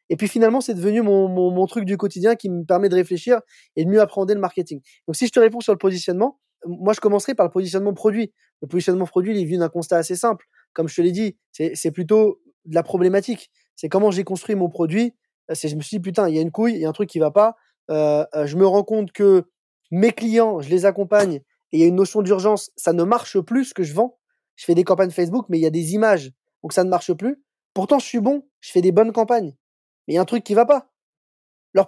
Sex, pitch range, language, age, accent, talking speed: male, 180-230 Hz, French, 20-39, French, 275 wpm